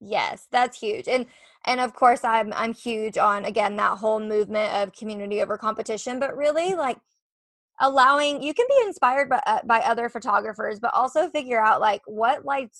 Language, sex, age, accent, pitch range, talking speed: English, female, 20-39, American, 215-260 Hz, 185 wpm